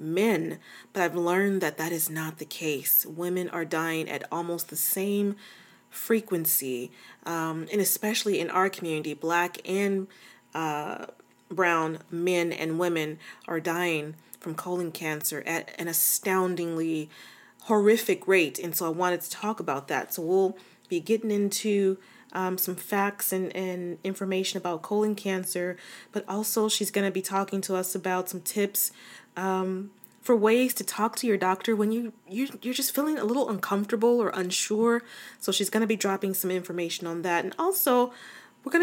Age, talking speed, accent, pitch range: 30-49, 170 wpm, American, 165-200 Hz